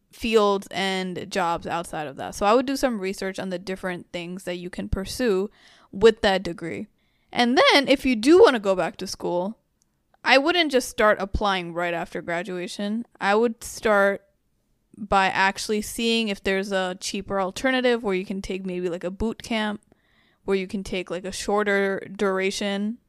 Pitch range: 190-220 Hz